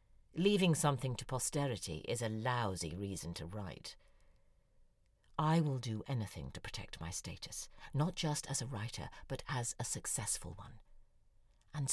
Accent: British